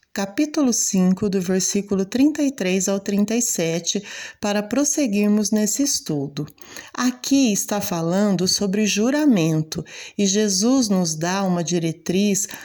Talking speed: 105 wpm